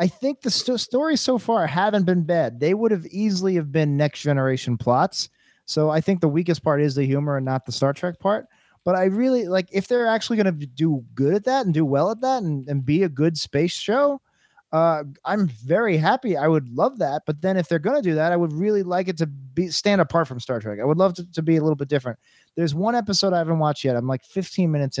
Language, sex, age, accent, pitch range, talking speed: English, male, 30-49, American, 135-175 Hz, 255 wpm